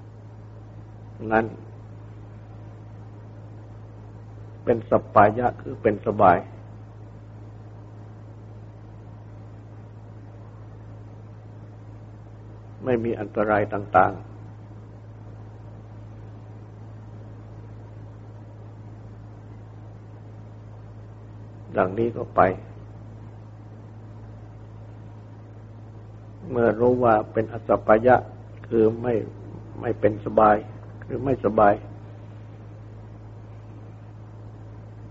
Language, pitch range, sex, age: Thai, 105-110 Hz, male, 60-79